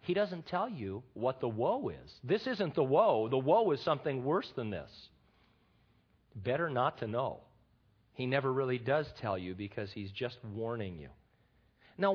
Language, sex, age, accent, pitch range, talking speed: English, male, 40-59, American, 120-200 Hz, 175 wpm